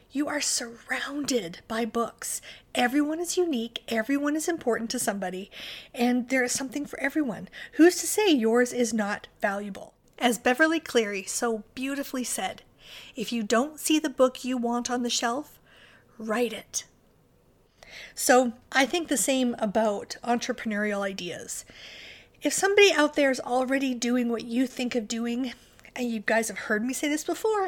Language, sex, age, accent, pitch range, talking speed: English, female, 40-59, American, 230-280 Hz, 160 wpm